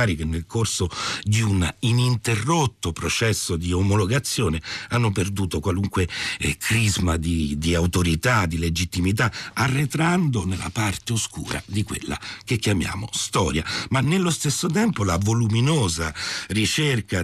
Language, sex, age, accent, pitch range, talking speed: Italian, male, 60-79, native, 80-110 Hz, 120 wpm